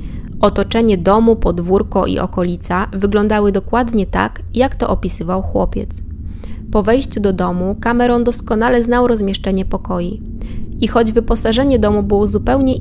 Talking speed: 125 wpm